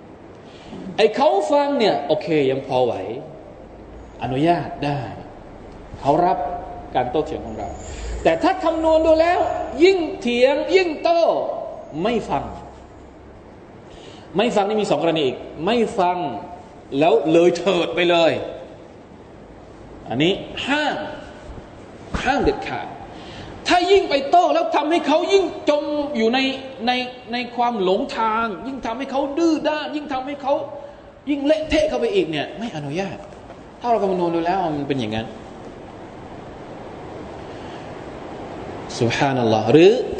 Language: Thai